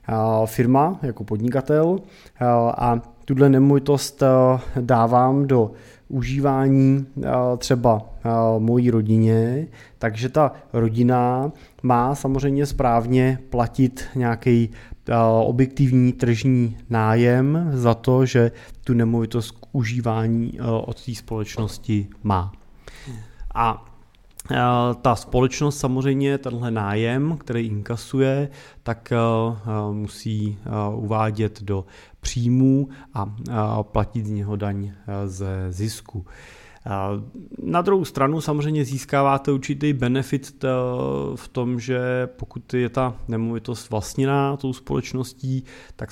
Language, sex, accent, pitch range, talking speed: Czech, male, native, 110-130 Hz, 95 wpm